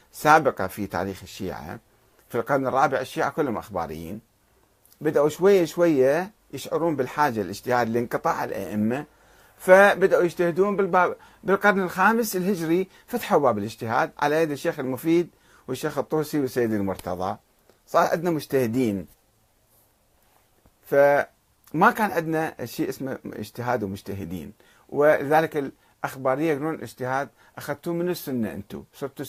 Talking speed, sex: 110 wpm, male